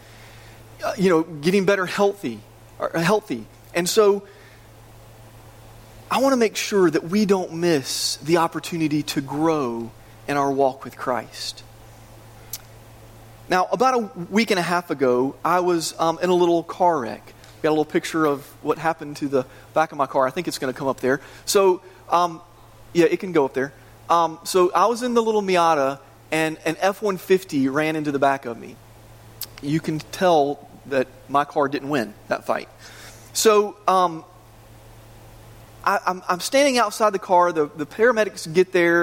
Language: English